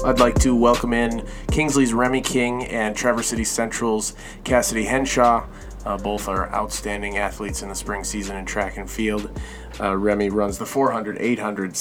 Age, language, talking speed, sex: 30-49, English, 165 wpm, male